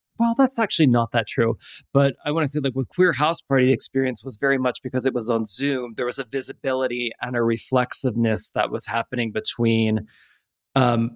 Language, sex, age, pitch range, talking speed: English, male, 20-39, 120-145 Hz, 200 wpm